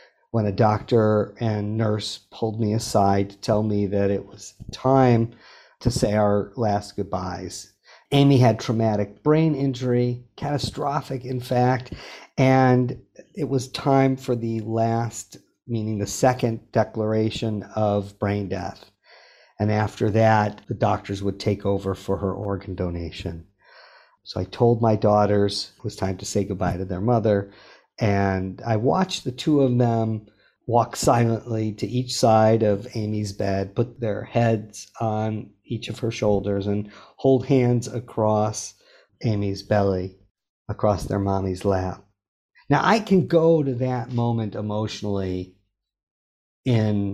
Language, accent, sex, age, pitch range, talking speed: English, American, male, 50-69, 100-120 Hz, 140 wpm